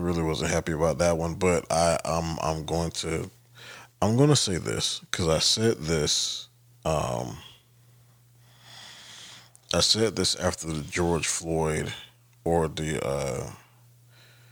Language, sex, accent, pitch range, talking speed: English, male, American, 85-120 Hz, 130 wpm